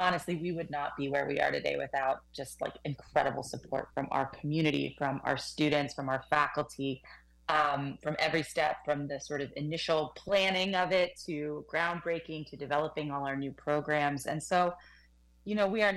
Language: English